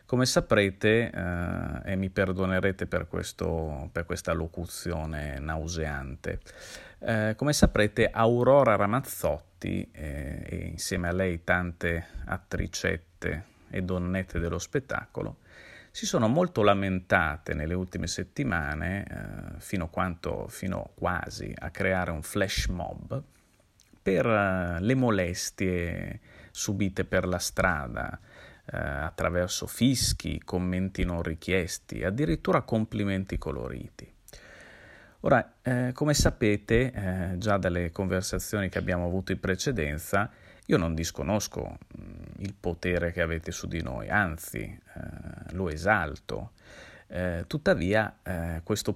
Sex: male